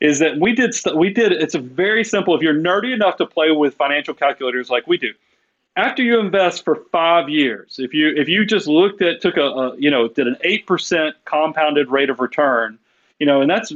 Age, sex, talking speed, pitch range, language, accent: 40-59, male, 225 wpm, 140-200 Hz, English, American